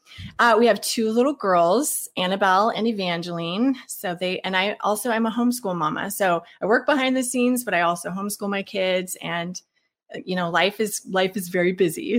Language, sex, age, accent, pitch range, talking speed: English, female, 20-39, American, 185-230 Hz, 190 wpm